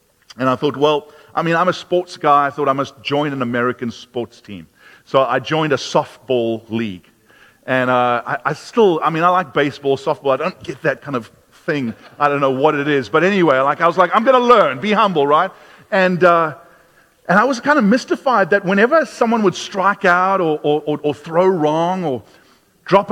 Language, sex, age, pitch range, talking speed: English, male, 40-59, 150-225 Hz, 215 wpm